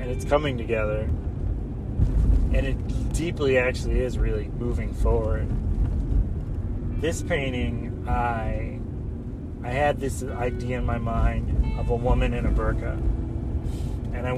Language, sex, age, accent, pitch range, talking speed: English, male, 30-49, American, 95-130 Hz, 125 wpm